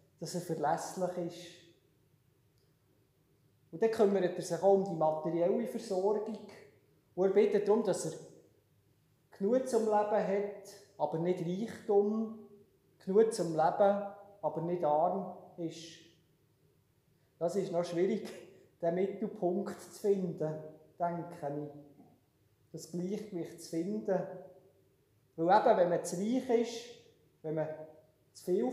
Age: 20-39